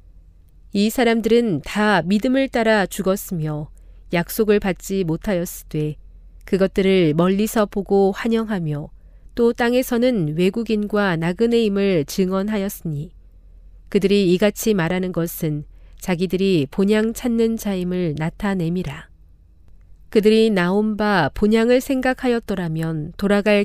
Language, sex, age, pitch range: Korean, female, 40-59, 155-215 Hz